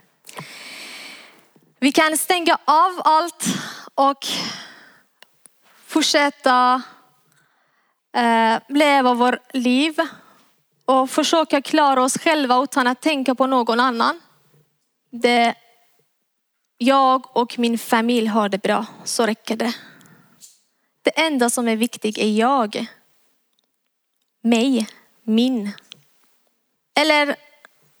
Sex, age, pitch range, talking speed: female, 20-39, 235-285 Hz, 90 wpm